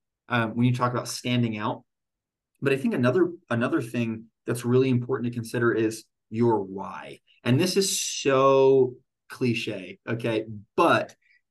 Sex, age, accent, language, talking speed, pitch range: male, 30-49, American, English, 145 wpm, 110-130 Hz